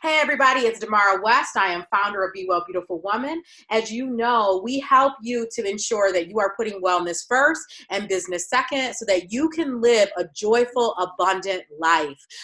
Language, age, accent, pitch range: English, 30-49, American, 180-240 Hz